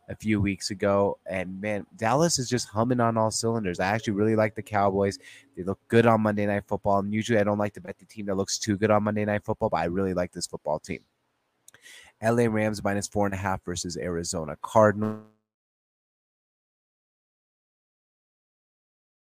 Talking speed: 185 wpm